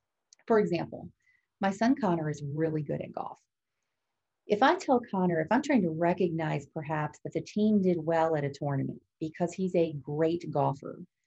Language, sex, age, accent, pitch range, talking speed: English, female, 40-59, American, 155-205 Hz, 175 wpm